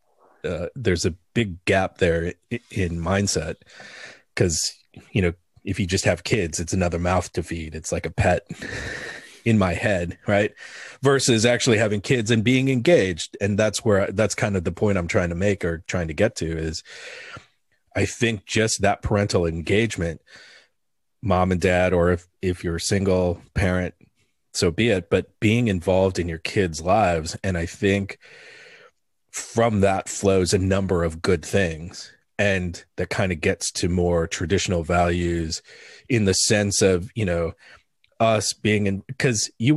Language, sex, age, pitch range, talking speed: English, male, 30-49, 85-105 Hz, 165 wpm